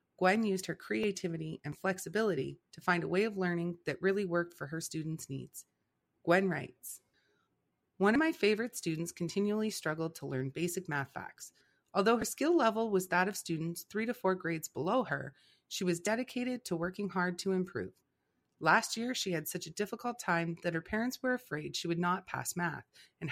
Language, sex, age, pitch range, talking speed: English, female, 30-49, 165-210 Hz, 190 wpm